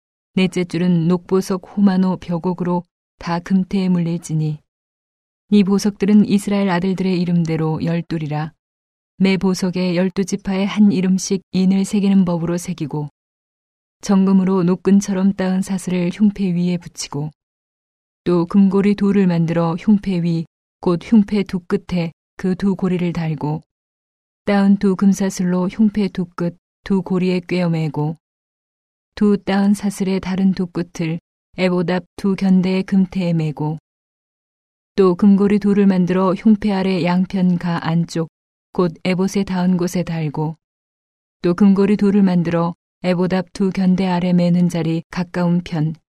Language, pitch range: Korean, 170-195 Hz